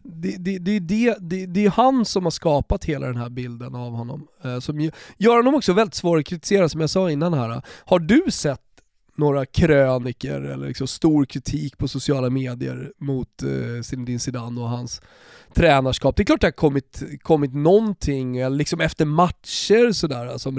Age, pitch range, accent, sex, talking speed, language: 20-39, 135-175 Hz, native, male, 185 wpm, Swedish